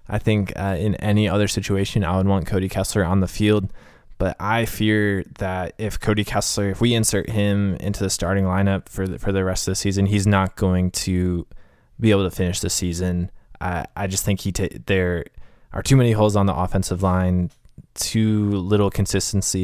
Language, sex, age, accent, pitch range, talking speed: English, male, 20-39, American, 90-105 Hz, 200 wpm